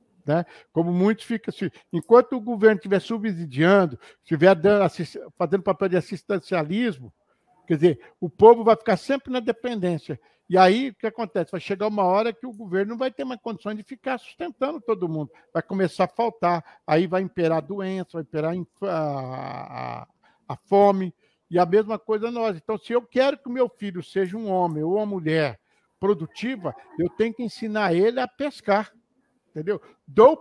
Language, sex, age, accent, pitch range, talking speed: Portuguese, male, 60-79, Brazilian, 180-235 Hz, 175 wpm